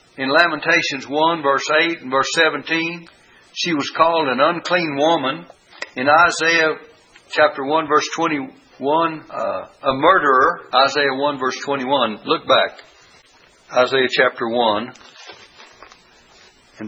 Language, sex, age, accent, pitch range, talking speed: English, male, 60-79, American, 140-170 Hz, 115 wpm